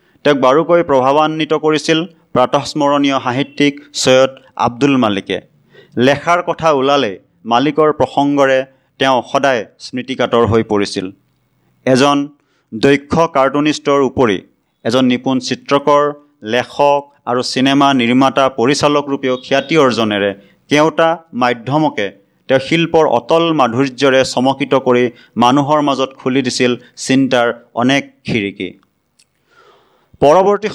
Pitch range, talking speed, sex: 125-150 Hz, 95 wpm, male